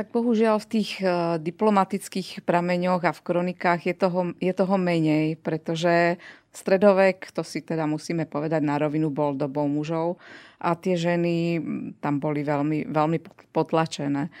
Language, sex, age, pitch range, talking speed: Slovak, female, 30-49, 160-185 Hz, 140 wpm